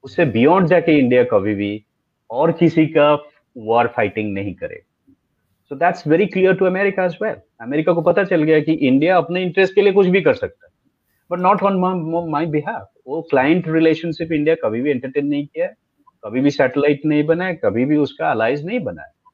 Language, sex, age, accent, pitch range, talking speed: Hindi, male, 30-49, native, 125-185 Hz, 35 wpm